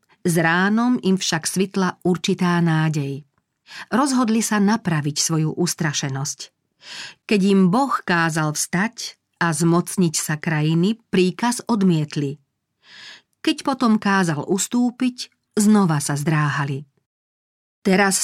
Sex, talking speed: female, 100 wpm